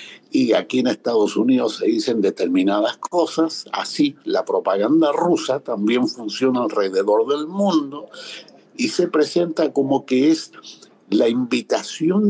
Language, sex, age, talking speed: Spanish, male, 60-79, 125 wpm